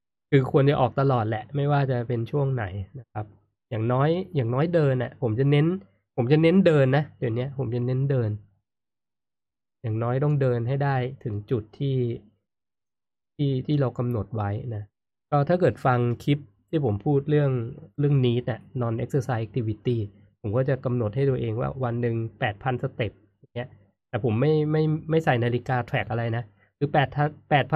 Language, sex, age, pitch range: Thai, male, 20-39, 105-140 Hz